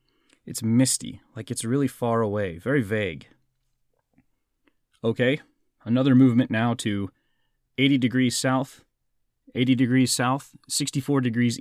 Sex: male